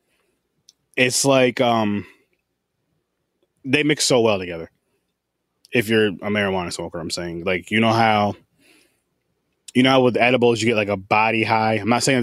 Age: 20-39